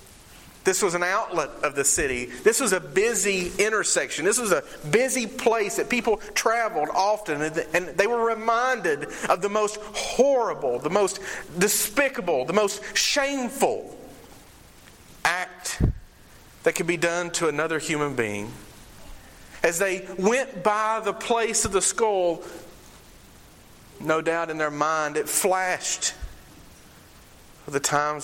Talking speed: 130 wpm